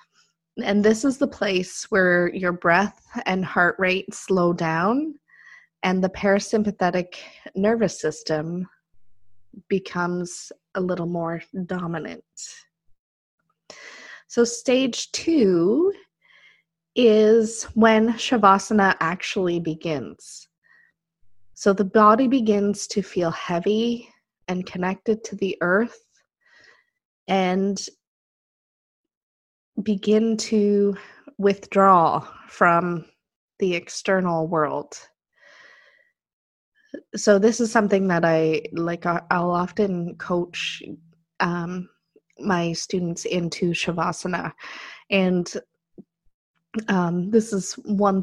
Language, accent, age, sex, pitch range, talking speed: English, American, 20-39, female, 170-210 Hz, 90 wpm